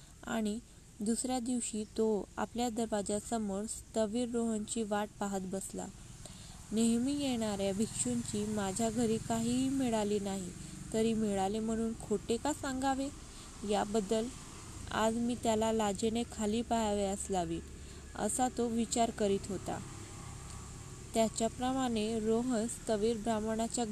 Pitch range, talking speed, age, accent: 205-235 Hz, 105 wpm, 20-39, native